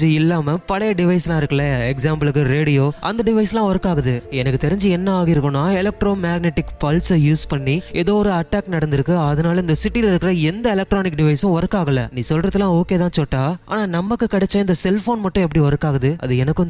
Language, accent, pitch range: Tamil, native, 150-190 Hz